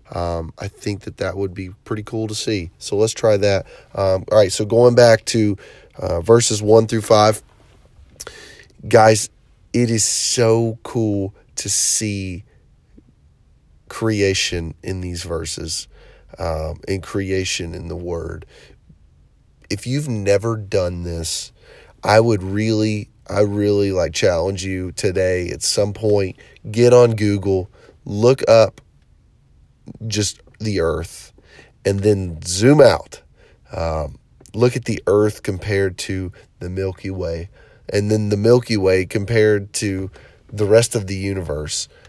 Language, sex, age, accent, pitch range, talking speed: English, male, 30-49, American, 90-110 Hz, 135 wpm